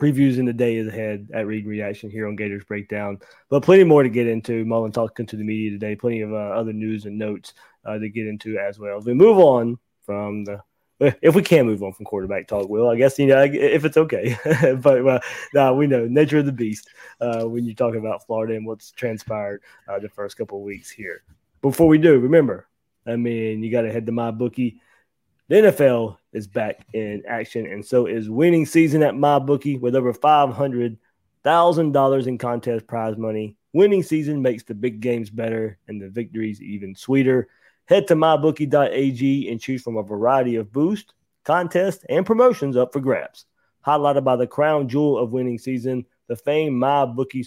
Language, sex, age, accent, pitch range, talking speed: English, male, 20-39, American, 110-140 Hz, 195 wpm